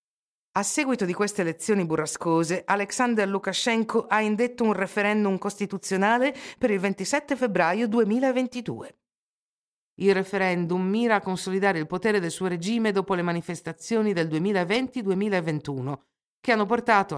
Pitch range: 155-220 Hz